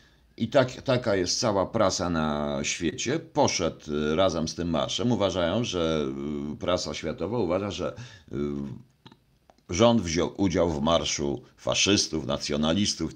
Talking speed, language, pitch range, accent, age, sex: 120 wpm, Polish, 85-125 Hz, native, 50-69, male